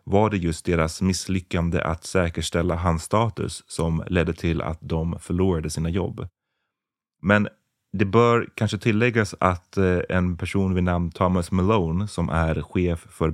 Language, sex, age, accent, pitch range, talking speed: Swedish, male, 30-49, native, 80-95 Hz, 150 wpm